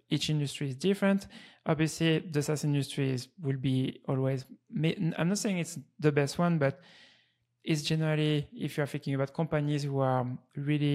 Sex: male